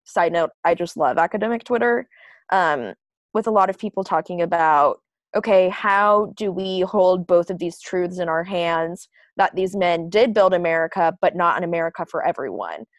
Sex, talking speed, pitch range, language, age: female, 180 wpm, 175-210 Hz, English, 20-39